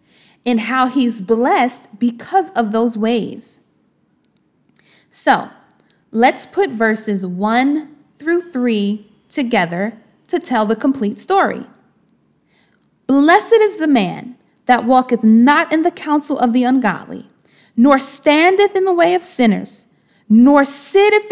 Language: English